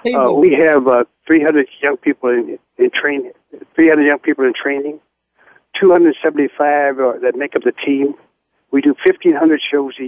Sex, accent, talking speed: male, American, 155 wpm